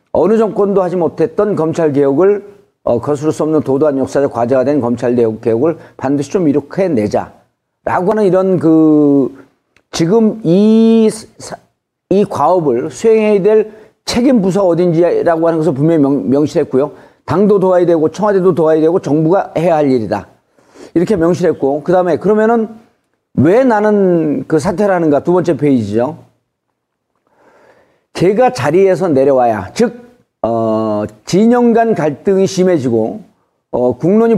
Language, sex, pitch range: Korean, male, 150-205 Hz